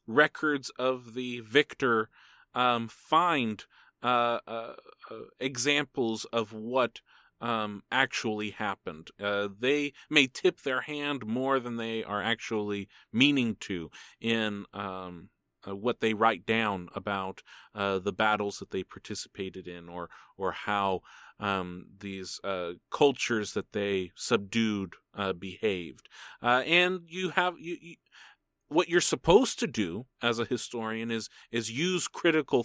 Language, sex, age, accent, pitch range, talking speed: English, male, 30-49, American, 105-130 Hz, 130 wpm